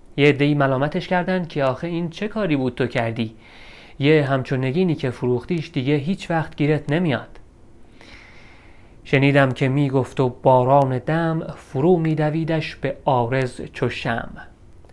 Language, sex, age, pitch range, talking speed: Persian, male, 30-49, 120-155 Hz, 130 wpm